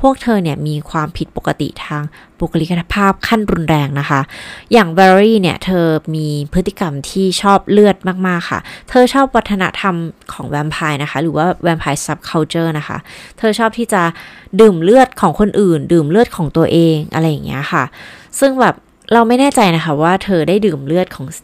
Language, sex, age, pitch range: Thai, female, 20-39, 155-200 Hz